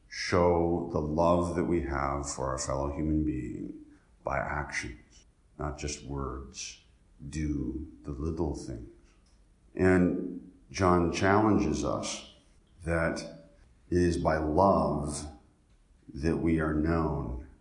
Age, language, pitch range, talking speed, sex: 50-69, English, 75-85 Hz, 110 wpm, male